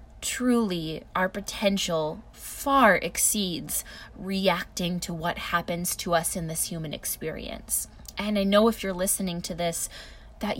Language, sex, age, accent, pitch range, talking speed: English, female, 20-39, American, 175-220 Hz, 135 wpm